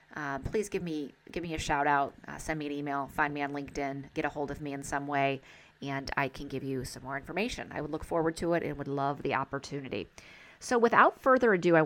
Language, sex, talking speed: English, female, 255 wpm